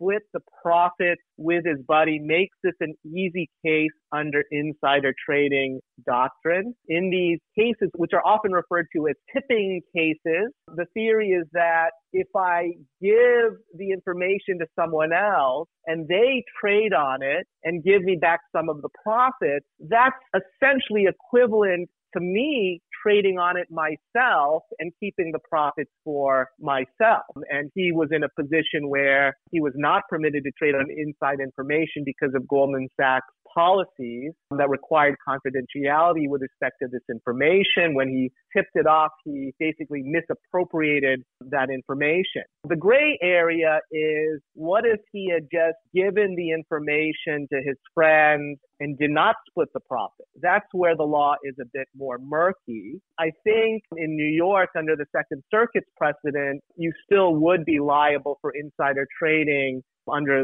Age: 40-59